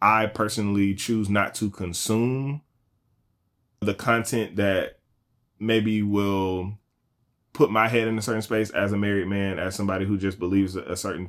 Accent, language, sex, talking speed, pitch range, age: American, English, male, 155 wpm, 95-120 Hz, 20-39